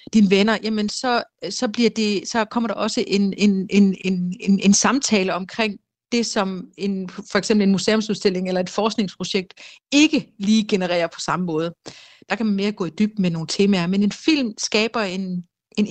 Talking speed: 190 wpm